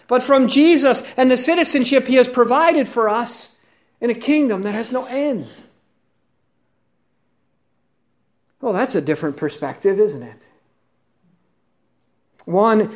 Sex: male